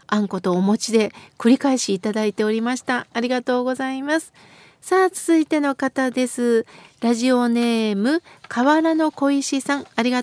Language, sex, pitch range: Japanese, female, 255-315 Hz